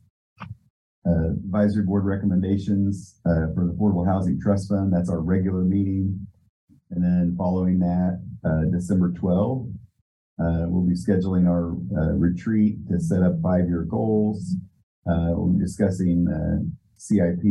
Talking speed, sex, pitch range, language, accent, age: 135 wpm, male, 85-100 Hz, English, American, 40-59